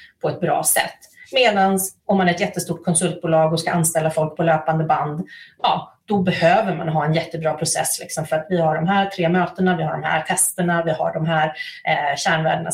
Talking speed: 215 wpm